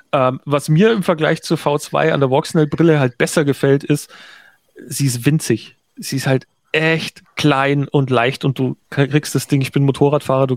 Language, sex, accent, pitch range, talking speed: German, male, German, 130-160 Hz, 185 wpm